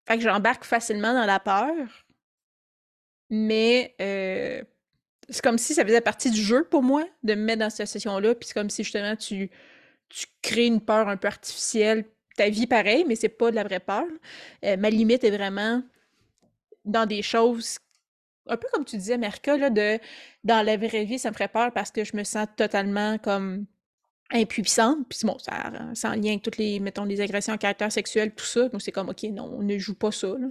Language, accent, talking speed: French, Canadian, 215 wpm